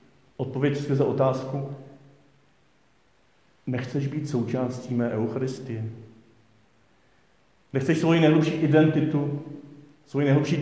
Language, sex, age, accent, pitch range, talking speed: Czech, male, 40-59, native, 125-150 Hz, 85 wpm